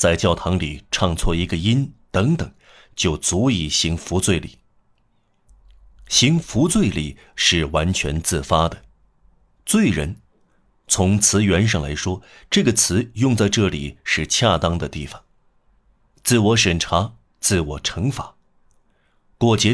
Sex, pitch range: male, 85-115 Hz